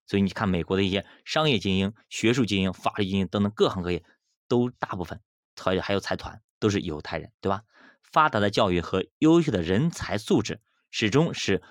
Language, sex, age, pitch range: Chinese, male, 20-39, 95-125 Hz